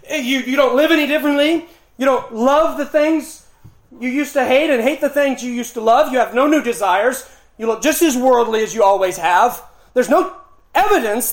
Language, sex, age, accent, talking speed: English, male, 30-49, American, 210 wpm